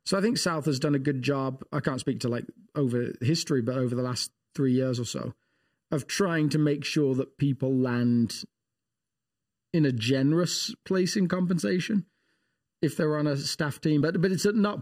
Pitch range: 125-170 Hz